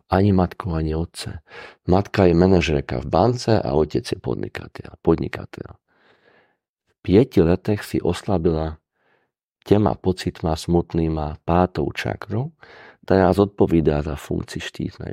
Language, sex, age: Czech, male, 50-69